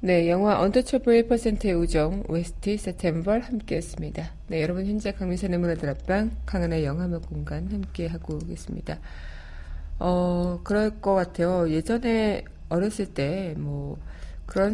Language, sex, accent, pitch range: Korean, female, native, 170-210 Hz